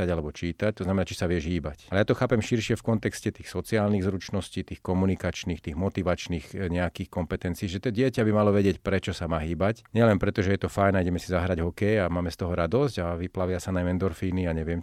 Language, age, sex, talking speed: Slovak, 40-59, male, 225 wpm